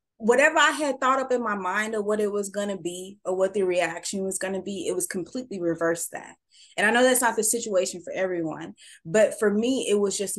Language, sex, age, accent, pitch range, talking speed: English, female, 20-39, American, 170-220 Hz, 250 wpm